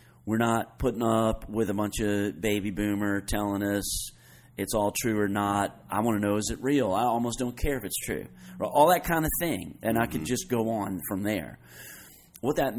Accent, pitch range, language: American, 100-125 Hz, English